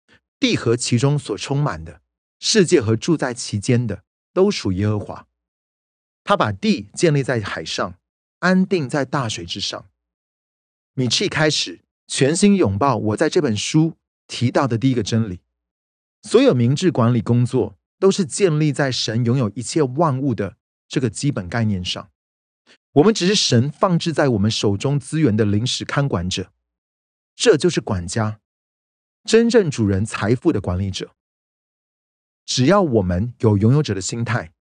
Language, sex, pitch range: Chinese, male, 95-150 Hz